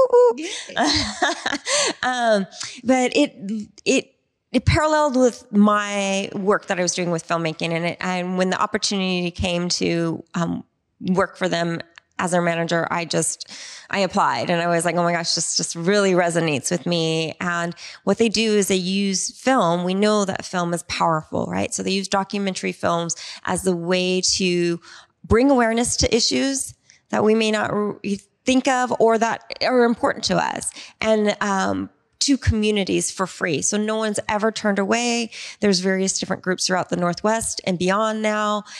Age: 20-39